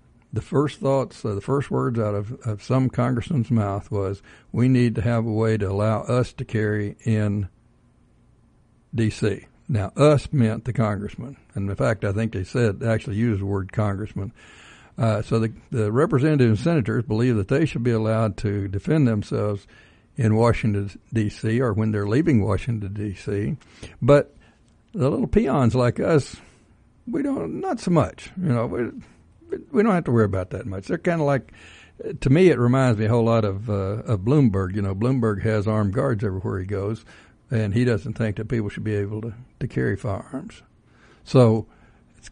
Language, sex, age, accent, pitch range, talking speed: English, male, 60-79, American, 105-125 Hz, 185 wpm